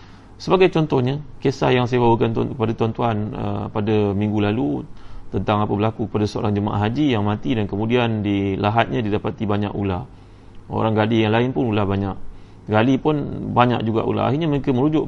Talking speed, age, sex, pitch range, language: 170 wpm, 30-49, male, 105-130 Hz, Malay